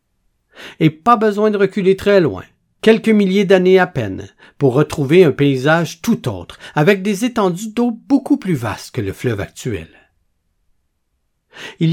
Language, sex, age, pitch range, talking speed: French, male, 60-79, 120-185 Hz, 150 wpm